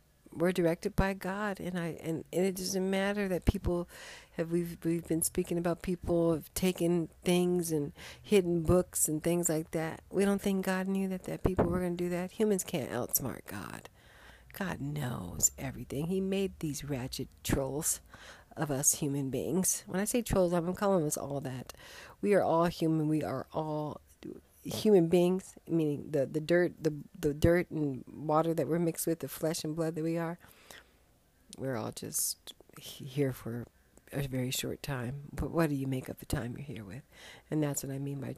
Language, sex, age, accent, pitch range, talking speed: English, female, 50-69, American, 140-180 Hz, 190 wpm